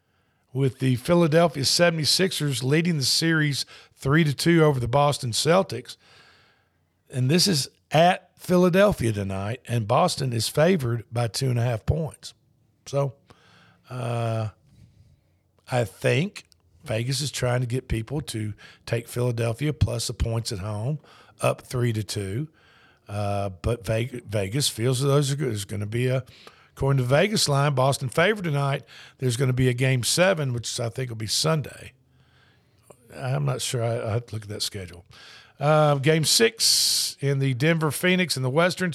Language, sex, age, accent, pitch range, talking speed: English, male, 50-69, American, 120-155 Hz, 160 wpm